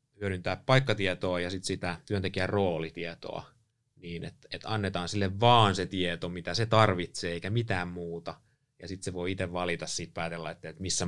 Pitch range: 85-110 Hz